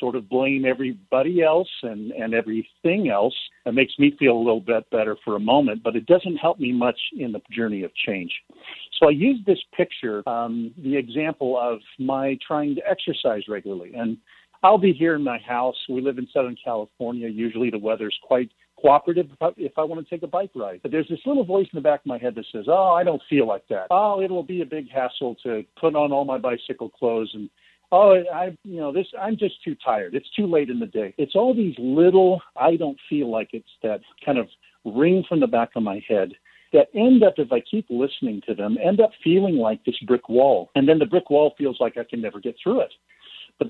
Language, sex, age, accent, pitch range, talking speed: English, male, 50-69, American, 120-175 Hz, 230 wpm